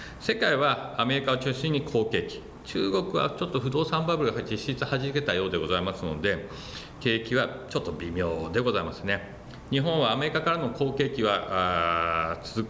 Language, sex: Japanese, male